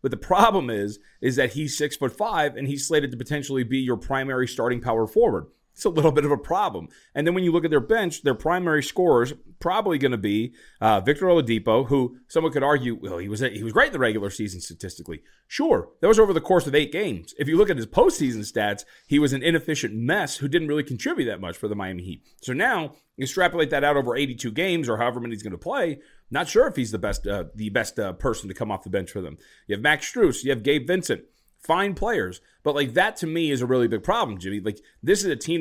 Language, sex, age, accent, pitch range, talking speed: English, male, 30-49, American, 115-150 Hz, 260 wpm